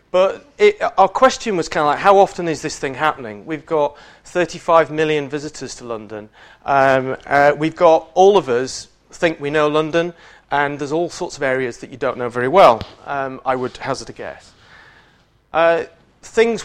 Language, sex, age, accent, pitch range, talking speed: English, male, 40-59, British, 145-185 Hz, 185 wpm